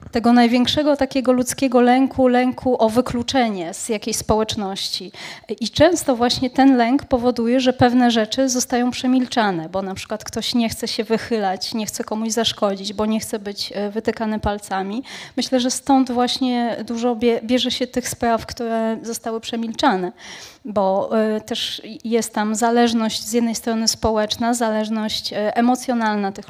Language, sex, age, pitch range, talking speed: Polish, female, 20-39, 215-255 Hz, 145 wpm